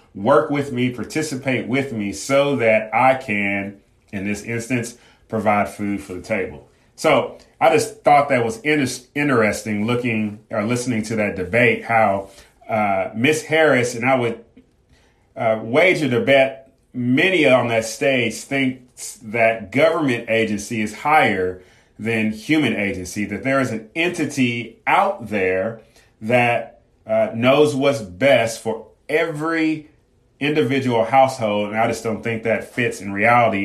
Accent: American